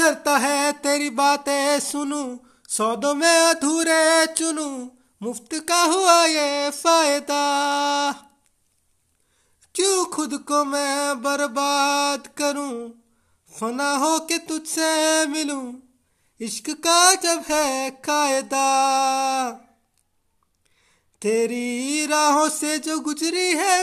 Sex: male